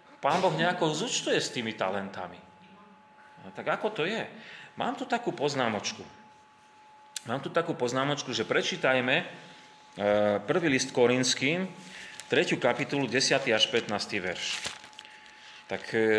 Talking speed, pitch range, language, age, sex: 115 wpm, 115-165 Hz, Slovak, 30-49, male